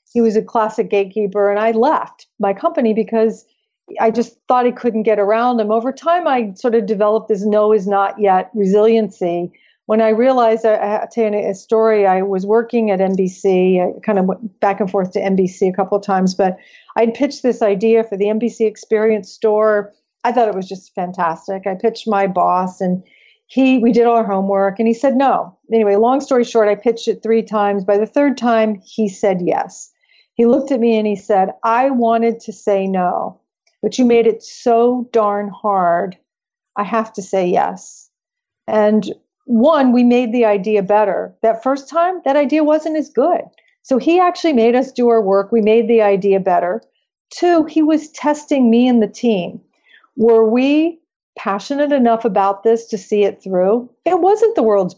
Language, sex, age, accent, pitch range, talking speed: English, female, 50-69, American, 200-250 Hz, 195 wpm